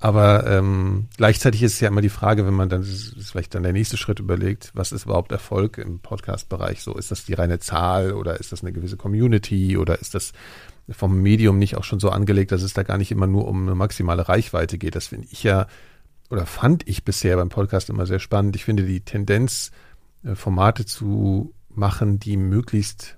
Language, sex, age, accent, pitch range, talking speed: German, male, 40-59, German, 95-105 Hz, 210 wpm